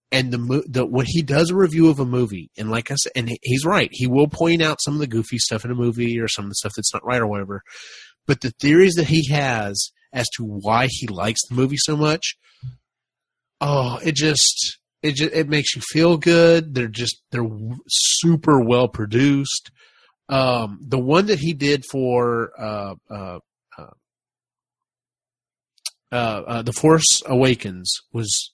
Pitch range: 110-145 Hz